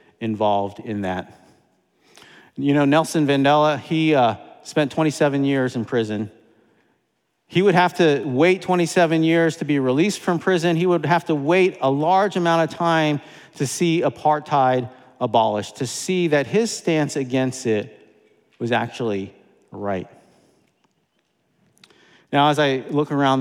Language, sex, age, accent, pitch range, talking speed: English, male, 40-59, American, 115-165 Hz, 140 wpm